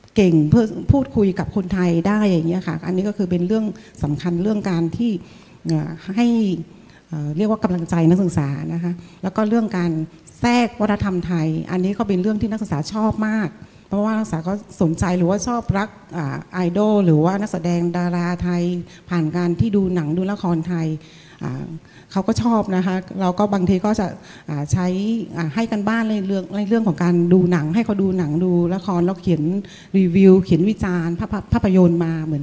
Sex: female